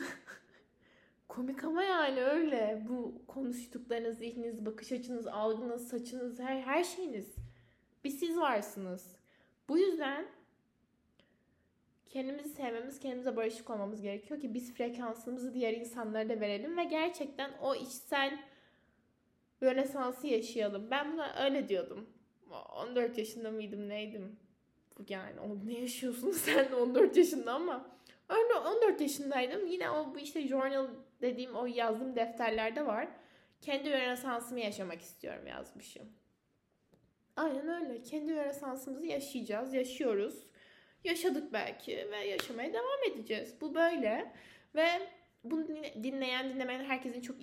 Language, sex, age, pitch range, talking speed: Turkish, female, 10-29, 225-285 Hz, 115 wpm